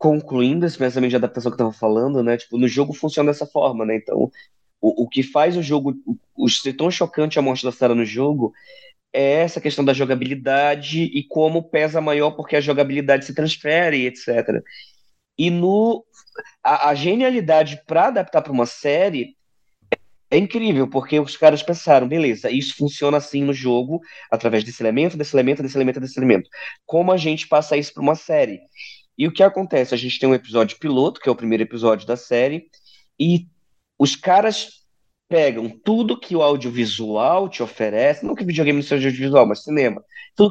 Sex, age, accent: male, 20-39, Brazilian